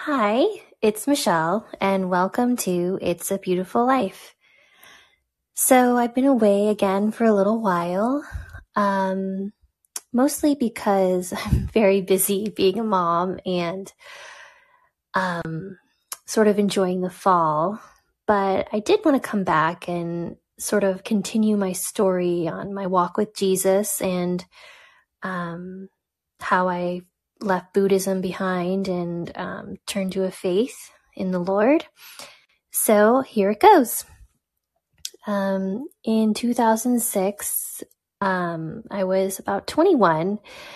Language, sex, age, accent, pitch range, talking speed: English, female, 20-39, American, 185-220 Hz, 120 wpm